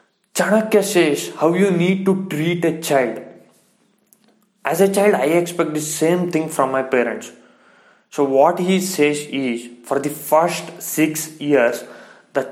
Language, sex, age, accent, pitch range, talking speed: English, male, 20-39, Indian, 145-190 Hz, 150 wpm